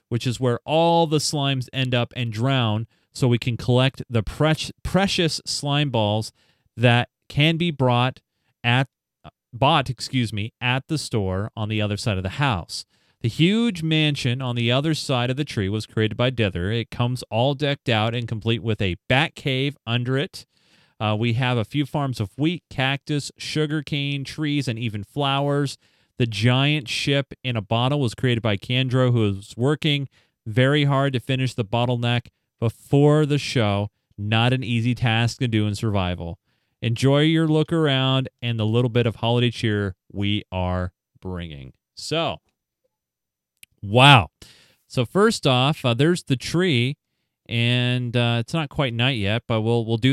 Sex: male